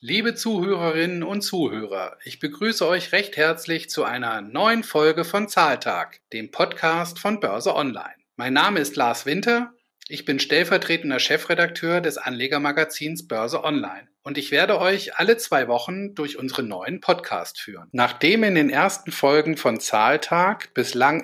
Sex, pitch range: male, 135-185 Hz